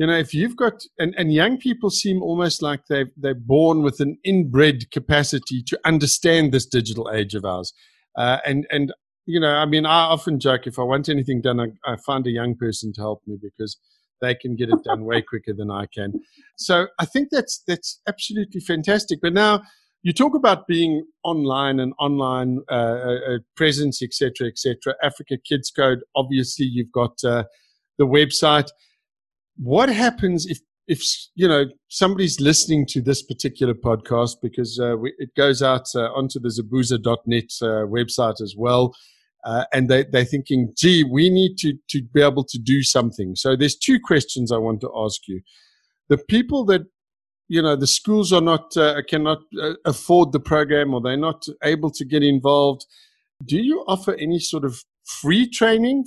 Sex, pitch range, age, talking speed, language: male, 125-170 Hz, 50-69, 185 wpm, English